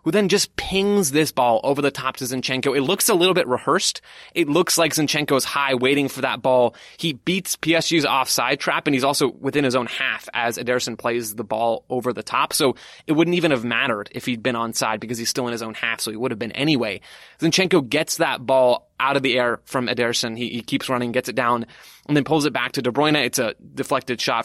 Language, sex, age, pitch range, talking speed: English, male, 20-39, 120-155 Hz, 240 wpm